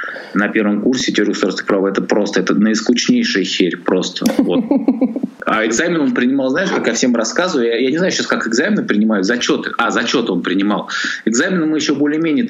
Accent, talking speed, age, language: native, 185 wpm, 20-39, Russian